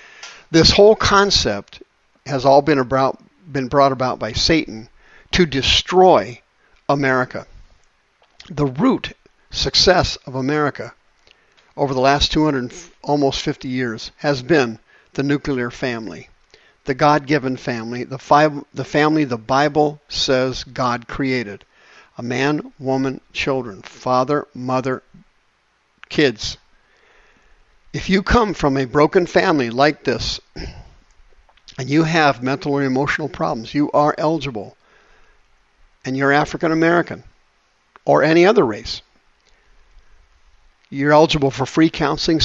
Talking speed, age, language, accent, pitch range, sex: 115 wpm, 50-69, English, American, 130-150 Hz, male